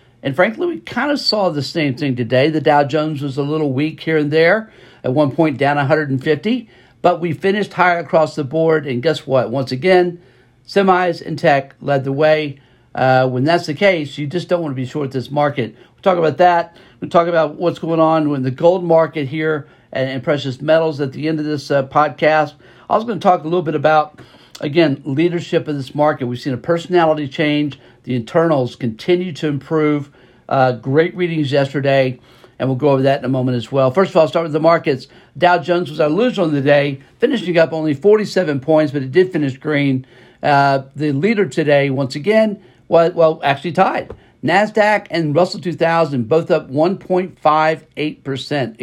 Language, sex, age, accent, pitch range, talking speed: English, male, 50-69, American, 135-170 Hz, 200 wpm